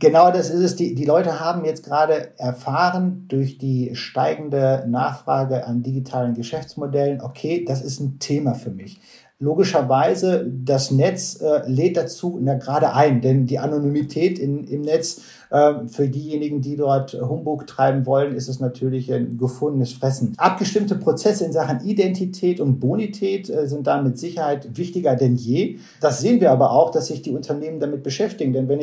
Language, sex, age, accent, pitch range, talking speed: German, male, 50-69, German, 130-170 Hz, 160 wpm